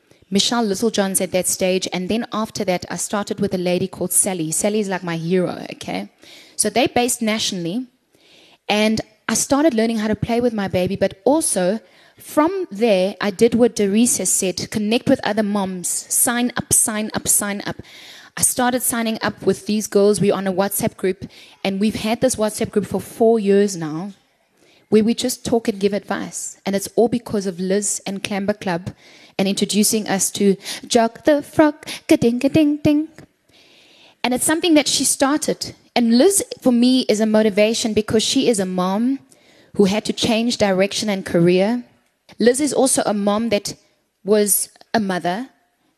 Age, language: 20-39, English